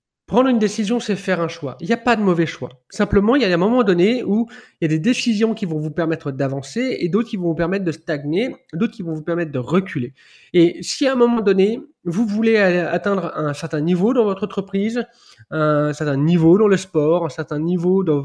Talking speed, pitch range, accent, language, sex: 235 wpm, 155-205 Hz, French, French, male